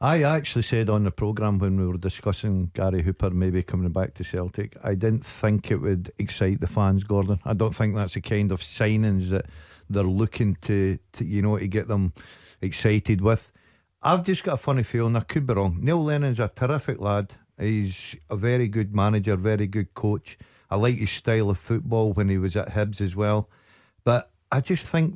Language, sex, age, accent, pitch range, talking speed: English, male, 50-69, British, 100-120 Hz, 205 wpm